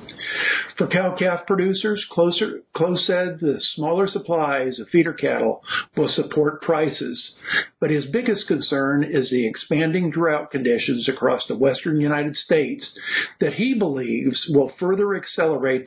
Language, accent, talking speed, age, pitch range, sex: English, American, 130 wpm, 50-69, 145-195 Hz, male